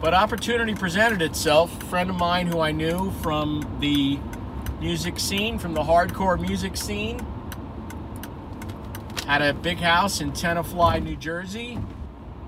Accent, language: American, English